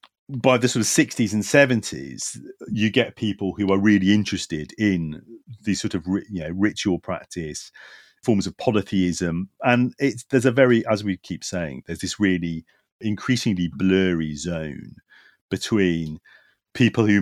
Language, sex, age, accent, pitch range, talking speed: English, male, 40-59, British, 85-105 Hz, 150 wpm